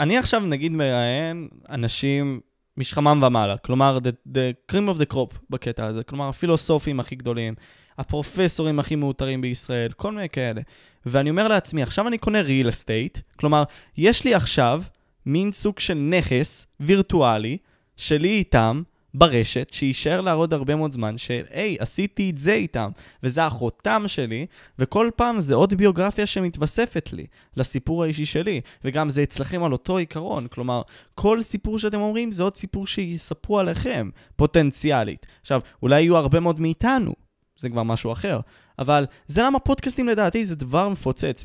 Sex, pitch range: male, 130-185 Hz